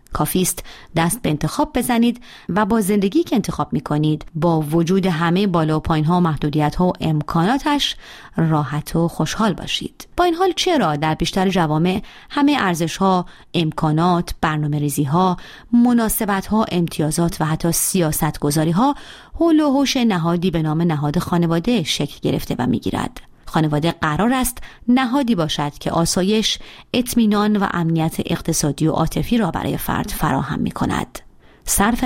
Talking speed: 140 wpm